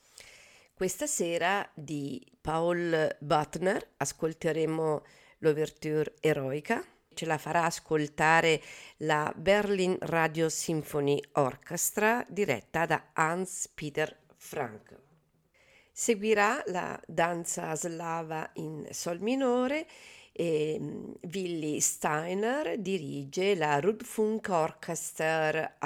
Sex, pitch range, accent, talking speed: female, 150-195 Hz, native, 80 wpm